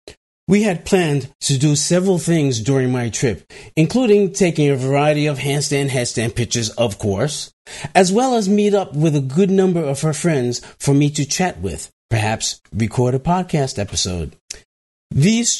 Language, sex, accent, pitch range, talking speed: English, male, American, 130-175 Hz, 165 wpm